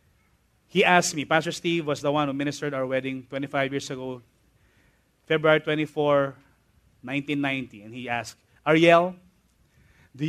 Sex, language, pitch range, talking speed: male, English, 140-215 Hz, 135 wpm